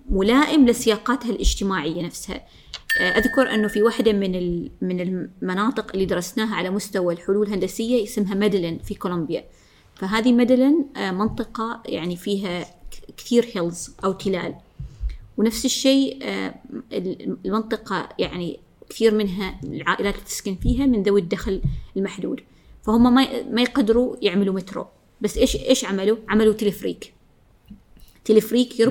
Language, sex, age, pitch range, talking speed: Arabic, female, 20-39, 195-250 Hz, 120 wpm